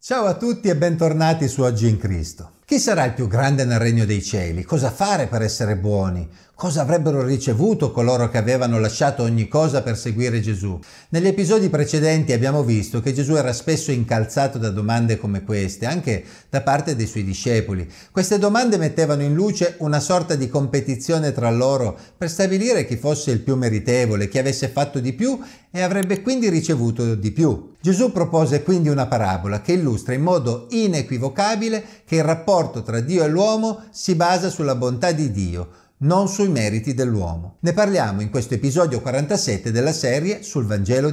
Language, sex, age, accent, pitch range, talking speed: Italian, male, 50-69, native, 110-165 Hz, 180 wpm